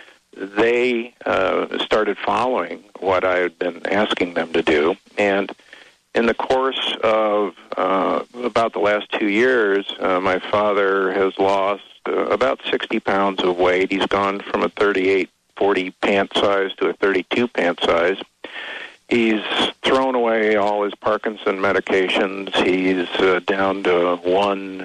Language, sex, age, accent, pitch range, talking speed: English, male, 50-69, American, 95-105 Hz, 140 wpm